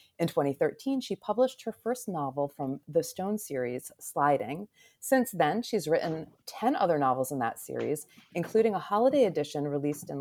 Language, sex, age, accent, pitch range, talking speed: English, female, 30-49, American, 145-195 Hz, 165 wpm